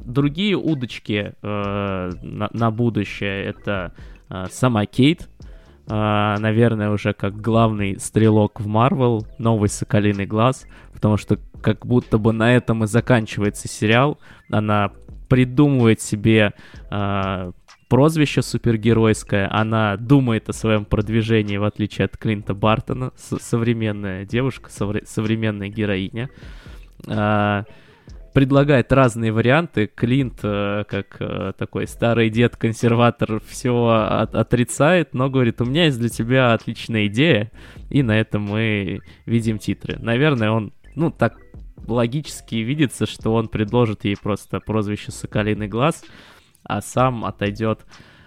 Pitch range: 105-120 Hz